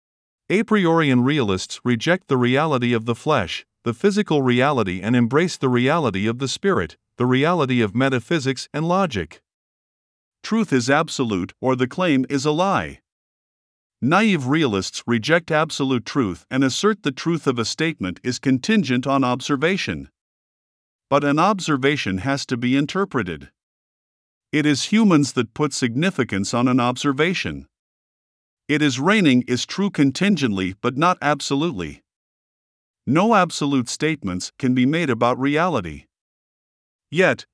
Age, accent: 50-69, American